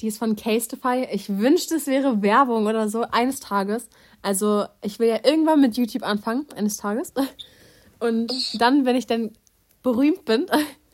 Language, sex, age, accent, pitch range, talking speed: German, female, 20-39, German, 200-240 Hz, 165 wpm